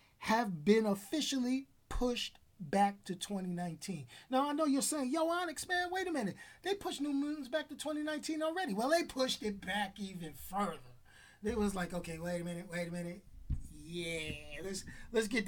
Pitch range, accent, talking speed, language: 165-235 Hz, American, 180 wpm, English